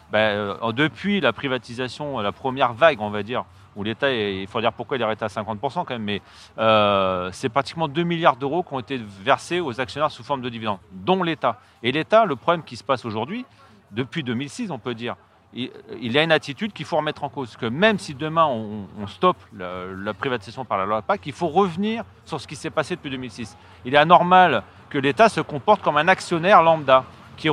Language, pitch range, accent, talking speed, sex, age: French, 115-165 Hz, French, 225 wpm, male, 40-59